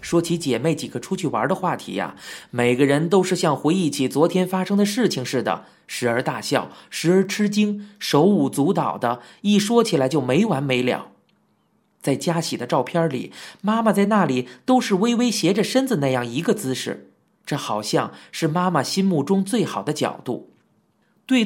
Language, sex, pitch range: Chinese, male, 150-205 Hz